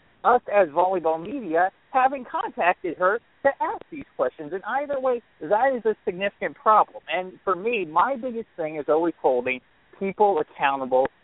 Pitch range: 165-255 Hz